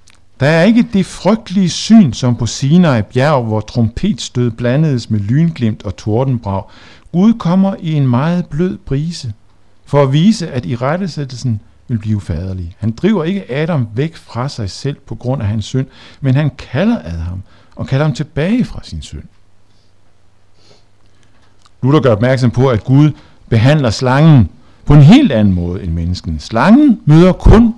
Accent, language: native, Danish